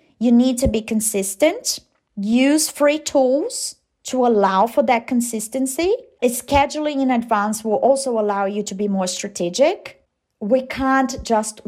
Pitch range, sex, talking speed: 210-275 Hz, female, 140 wpm